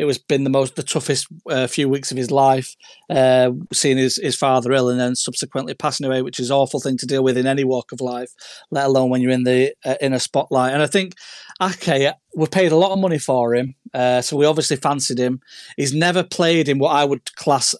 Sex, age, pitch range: male, 30-49, 130-150 Hz